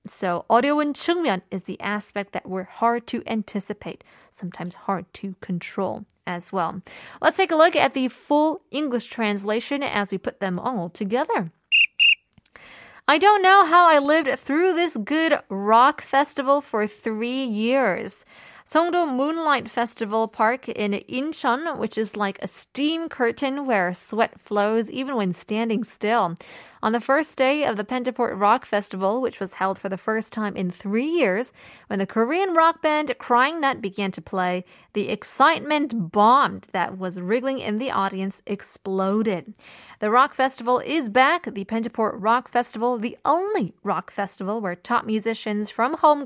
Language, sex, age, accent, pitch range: Korean, female, 20-39, American, 200-270 Hz